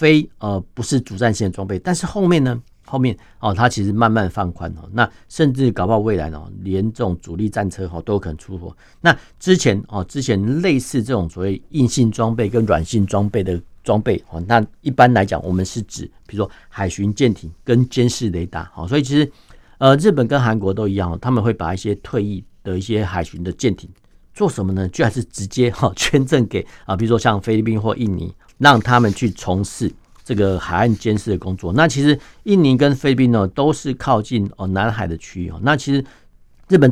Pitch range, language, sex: 95-120 Hz, Chinese, male